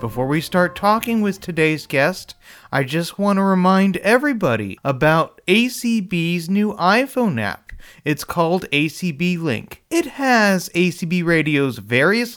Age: 30-49